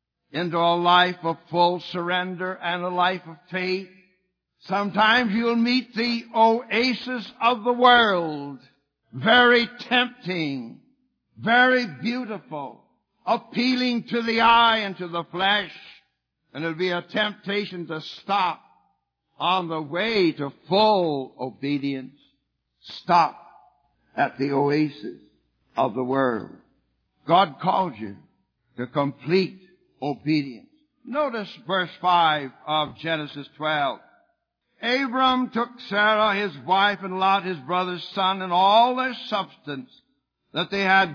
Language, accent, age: English, American, 60-79